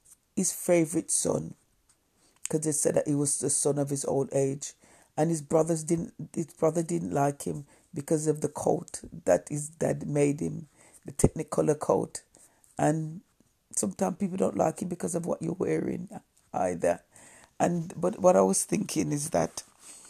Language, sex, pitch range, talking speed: English, female, 145-175 Hz, 165 wpm